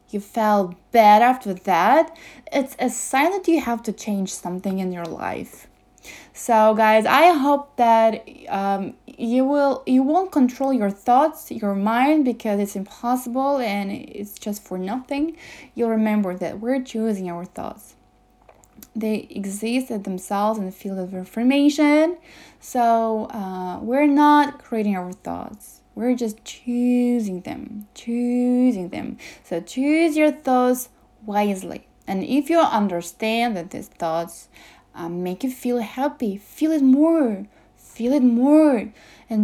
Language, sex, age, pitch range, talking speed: English, female, 10-29, 210-270 Hz, 145 wpm